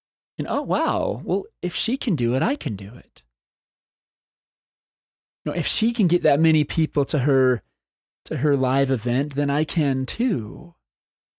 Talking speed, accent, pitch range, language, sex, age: 165 wpm, American, 120-165 Hz, English, male, 20-39